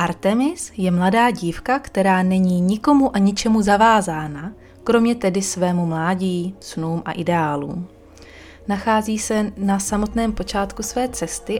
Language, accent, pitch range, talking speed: Czech, native, 175-205 Hz, 125 wpm